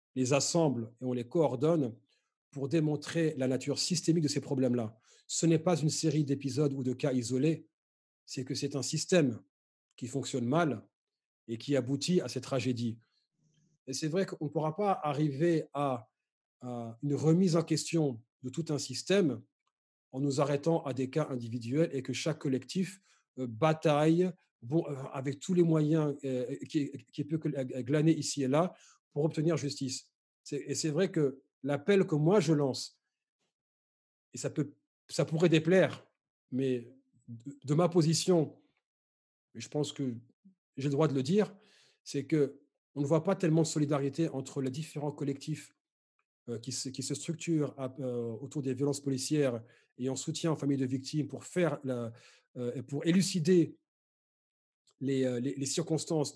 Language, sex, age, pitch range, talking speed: French, male, 40-59, 130-160 Hz, 165 wpm